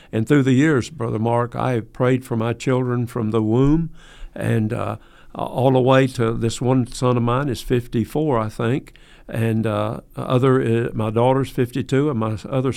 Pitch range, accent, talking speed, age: 115-135 Hz, American, 190 wpm, 50-69